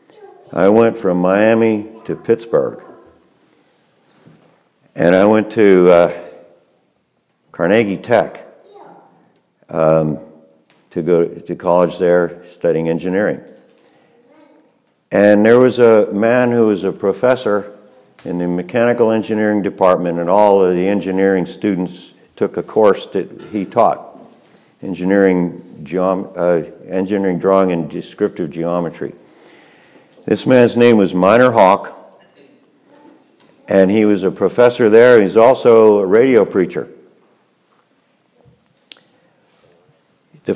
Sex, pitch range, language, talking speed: male, 90-115 Hz, English, 105 wpm